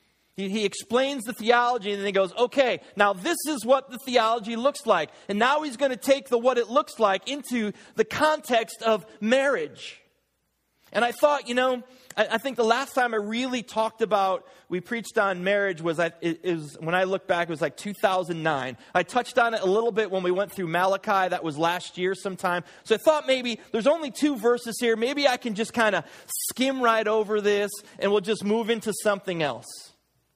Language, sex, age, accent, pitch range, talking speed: English, male, 30-49, American, 205-265 Hz, 210 wpm